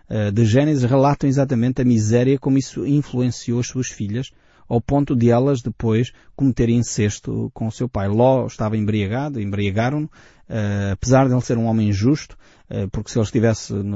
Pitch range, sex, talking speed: 110-135 Hz, male, 165 wpm